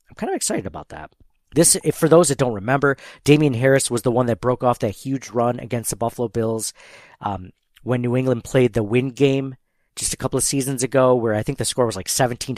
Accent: American